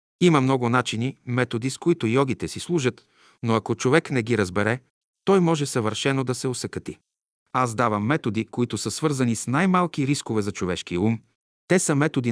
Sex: male